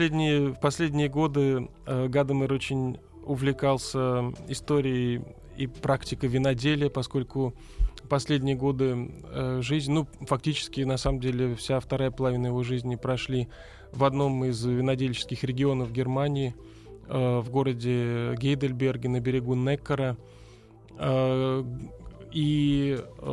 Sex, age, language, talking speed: male, 20-39, Russian, 110 wpm